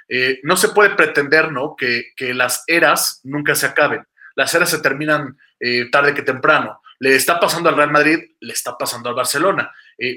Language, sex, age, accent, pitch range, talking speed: Spanish, male, 30-49, Mexican, 145-185 Hz, 195 wpm